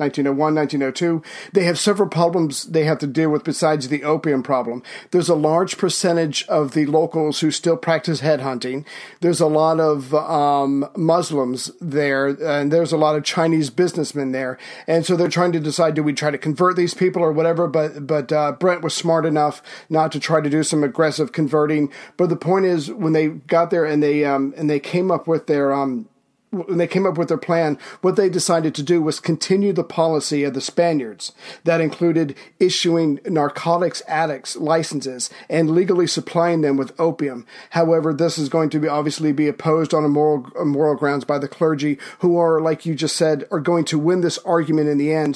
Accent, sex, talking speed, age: American, male, 200 wpm, 40-59